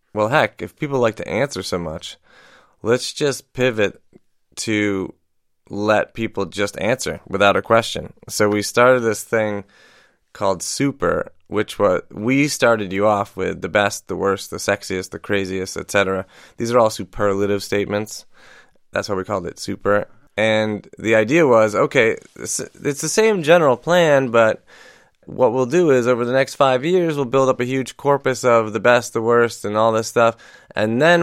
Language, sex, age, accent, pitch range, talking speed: English, male, 20-39, American, 100-130 Hz, 175 wpm